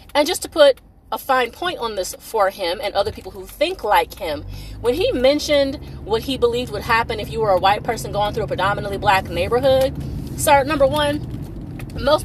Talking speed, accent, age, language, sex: 205 wpm, American, 30-49, English, female